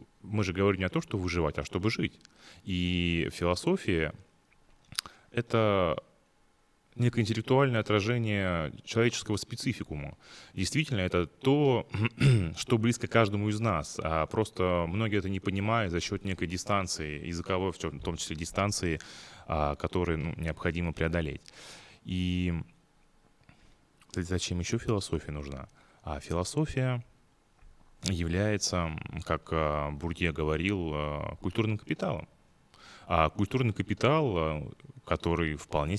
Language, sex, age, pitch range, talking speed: Russian, male, 20-39, 80-105 Hz, 105 wpm